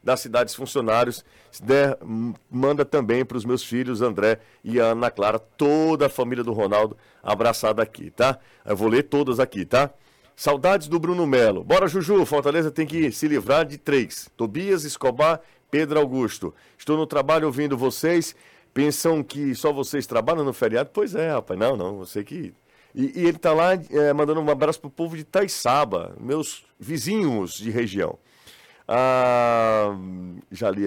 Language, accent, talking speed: Portuguese, Brazilian, 165 wpm